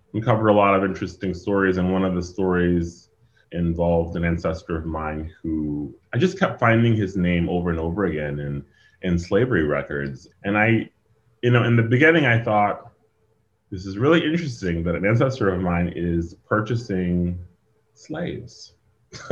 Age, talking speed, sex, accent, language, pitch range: 30-49, 165 wpm, male, American, English, 85-110 Hz